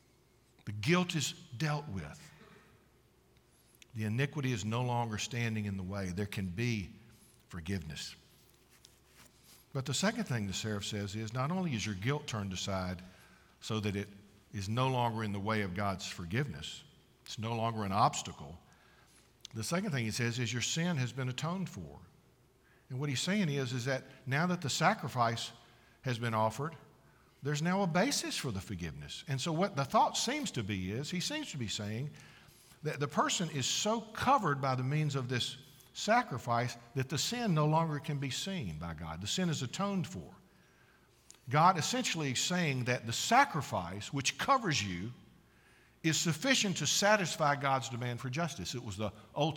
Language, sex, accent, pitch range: English, male, American, 110-150 Hz